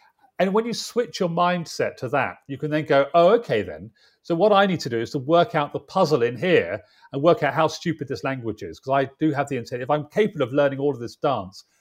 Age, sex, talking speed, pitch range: 40-59, male, 265 wpm, 120-170 Hz